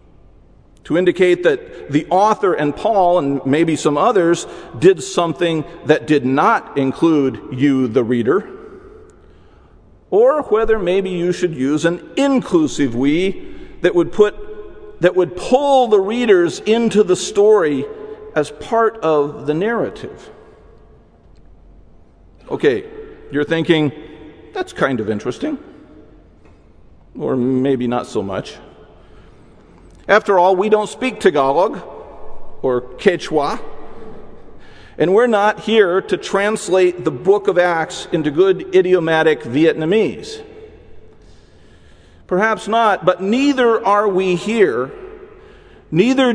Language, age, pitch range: English, 50-69, 155-250 Hz